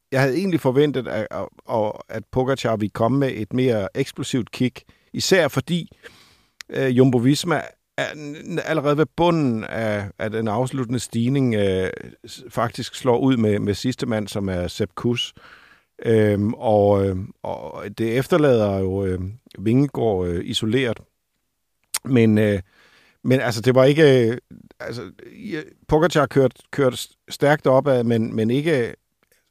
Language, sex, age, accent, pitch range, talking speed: Danish, male, 50-69, native, 110-135 Hz, 135 wpm